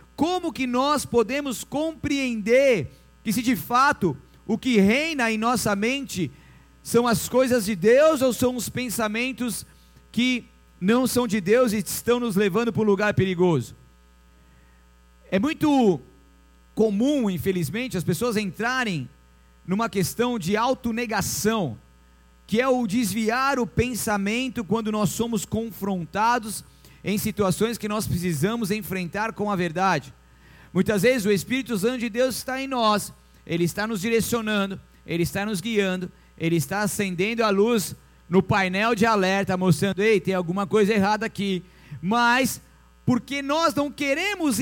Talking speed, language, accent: 145 wpm, Portuguese, Brazilian